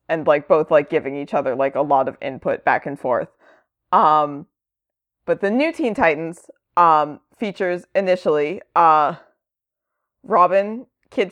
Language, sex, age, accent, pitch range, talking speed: English, female, 20-39, American, 160-215 Hz, 145 wpm